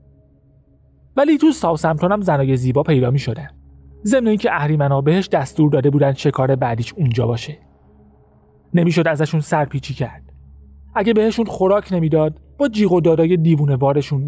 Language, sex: Persian, male